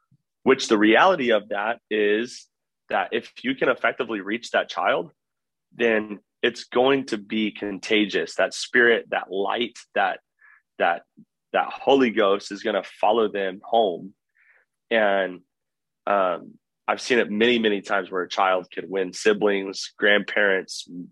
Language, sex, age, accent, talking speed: English, male, 30-49, American, 140 wpm